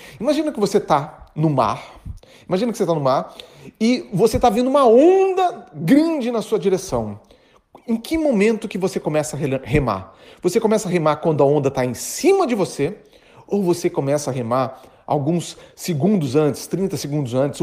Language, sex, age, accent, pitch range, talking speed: Portuguese, male, 40-59, Brazilian, 145-210 Hz, 180 wpm